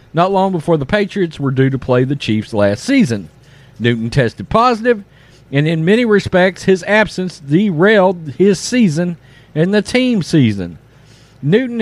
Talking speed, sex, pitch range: 150 wpm, male, 145-235 Hz